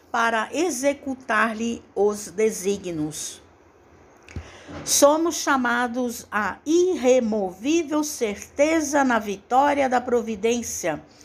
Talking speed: 70 wpm